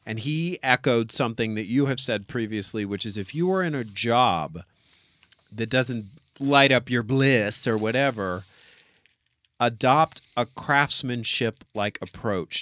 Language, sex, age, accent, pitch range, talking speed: English, male, 40-59, American, 105-130 Hz, 140 wpm